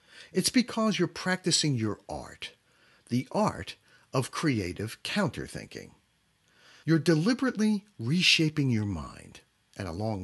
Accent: American